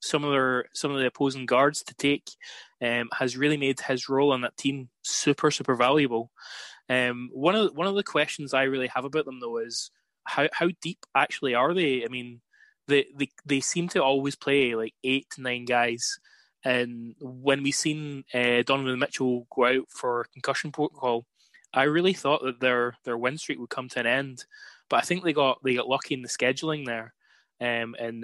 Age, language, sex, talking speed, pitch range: 20-39, English, male, 205 wpm, 120-140 Hz